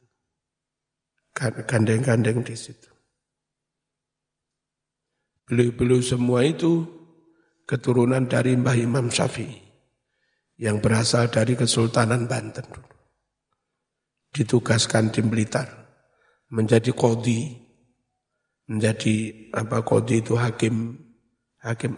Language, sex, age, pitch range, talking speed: Indonesian, male, 50-69, 115-135 Hz, 75 wpm